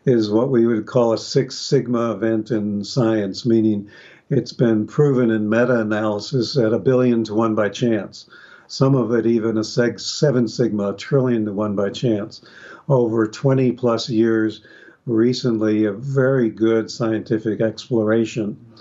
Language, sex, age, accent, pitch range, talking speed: English, male, 60-79, American, 110-125 Hz, 140 wpm